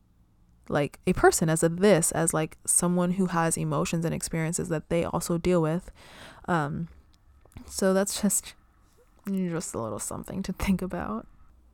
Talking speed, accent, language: 155 wpm, American, English